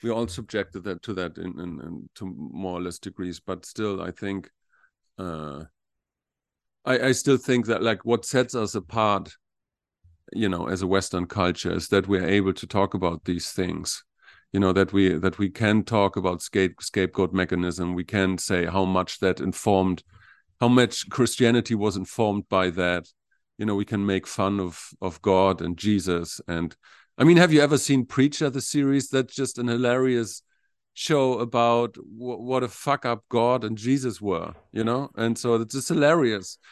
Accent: German